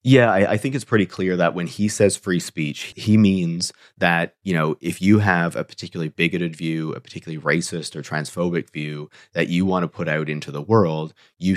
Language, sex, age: English, male, 30-49